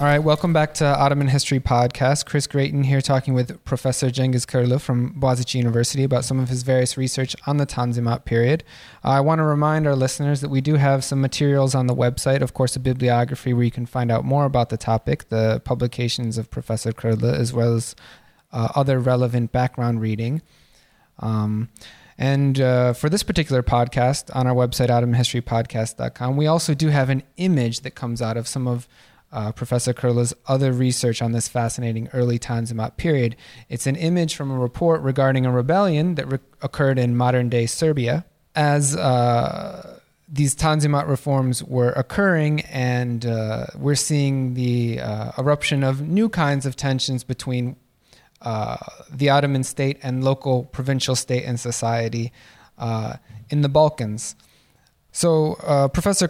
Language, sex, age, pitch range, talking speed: English, male, 20-39, 120-145 Hz, 165 wpm